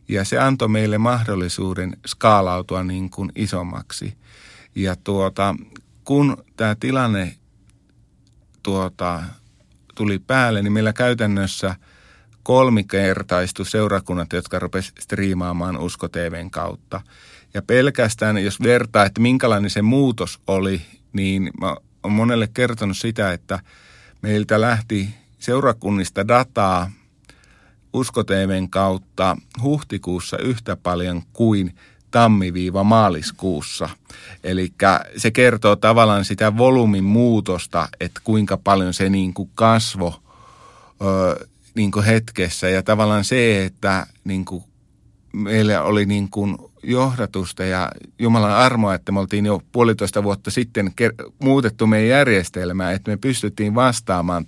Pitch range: 95-115 Hz